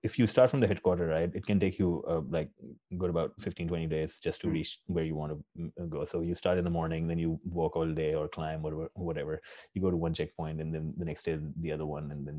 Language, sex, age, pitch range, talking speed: English, male, 30-49, 80-100 Hz, 275 wpm